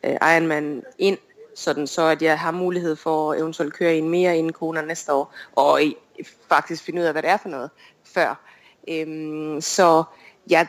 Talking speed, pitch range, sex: 175 wpm, 155-180 Hz, female